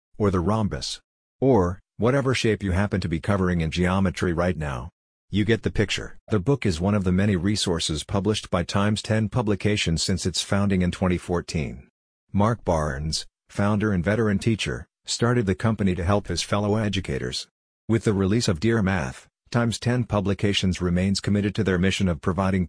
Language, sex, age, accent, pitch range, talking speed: English, male, 50-69, American, 90-105 Hz, 175 wpm